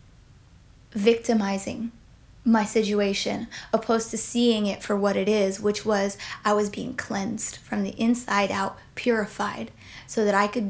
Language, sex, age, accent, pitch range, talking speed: English, female, 20-39, American, 200-240 Hz, 145 wpm